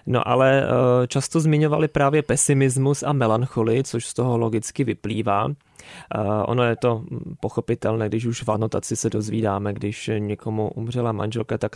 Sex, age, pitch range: male, 20-39, 115-135 Hz